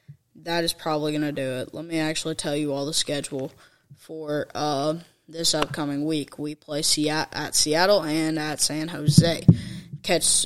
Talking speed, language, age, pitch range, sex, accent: 165 wpm, English, 10-29, 150-170 Hz, female, American